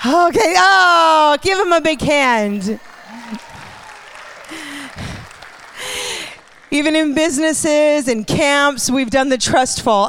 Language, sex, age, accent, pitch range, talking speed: English, female, 40-59, American, 220-295 Hz, 100 wpm